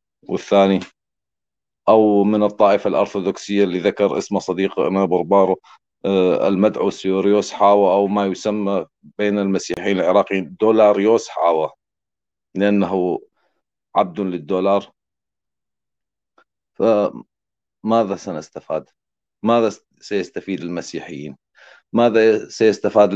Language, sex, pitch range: Arabic, male, 85-100 Hz